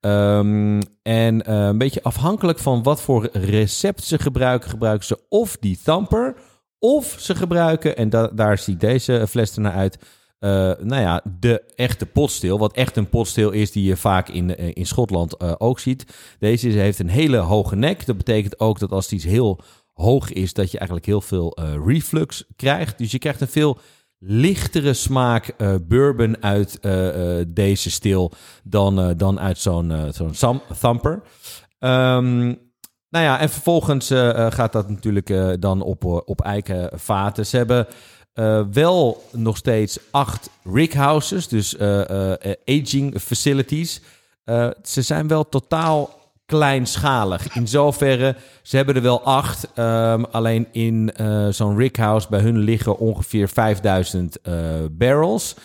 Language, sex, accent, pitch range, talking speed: Dutch, male, Dutch, 100-130 Hz, 155 wpm